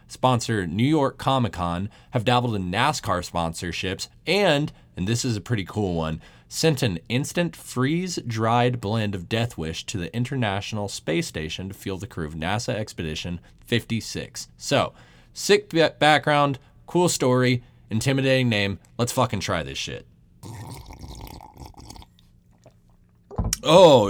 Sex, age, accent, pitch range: male, 30-49, American, 90-125 Hz